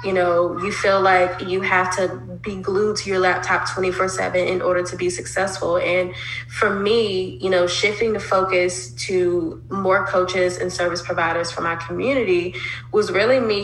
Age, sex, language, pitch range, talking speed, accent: 20-39, female, English, 175-195 Hz, 175 wpm, American